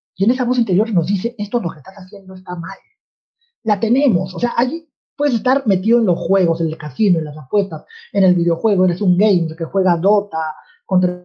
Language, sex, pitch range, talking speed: Spanish, male, 170-210 Hz, 225 wpm